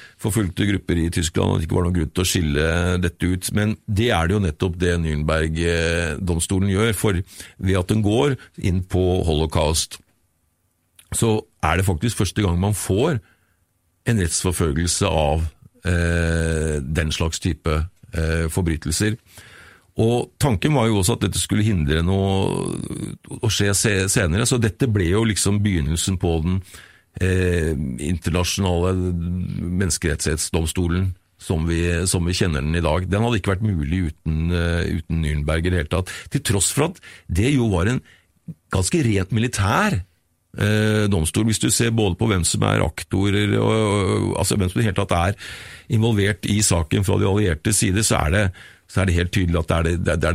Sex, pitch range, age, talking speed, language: male, 85-105 Hz, 50-69, 165 wpm, English